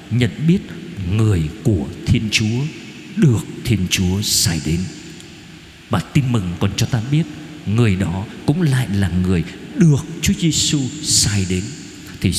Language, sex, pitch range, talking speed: Vietnamese, male, 105-165 Hz, 145 wpm